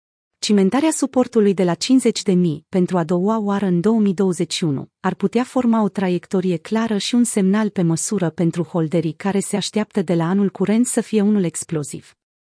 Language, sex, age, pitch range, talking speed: Romanian, female, 30-49, 175-220 Hz, 165 wpm